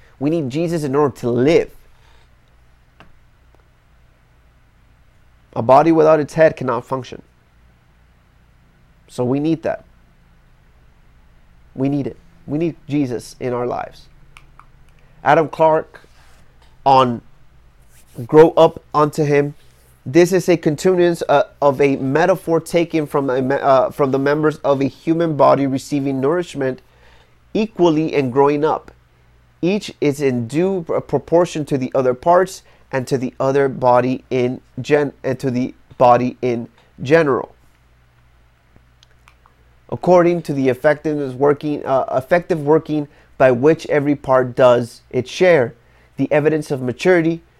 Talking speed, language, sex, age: 125 wpm, English, male, 30-49